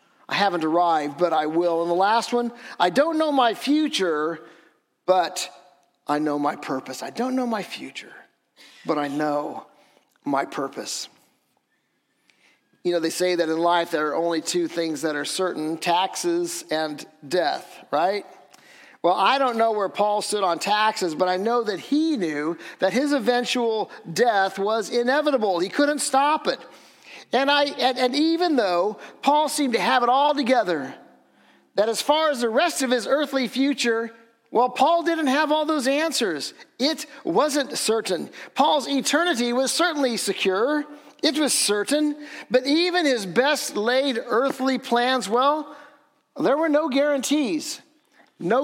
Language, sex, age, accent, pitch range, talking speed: English, male, 50-69, American, 185-285 Hz, 160 wpm